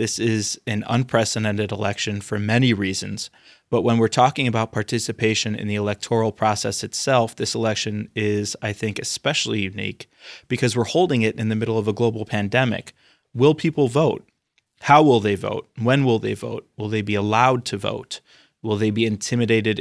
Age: 20-39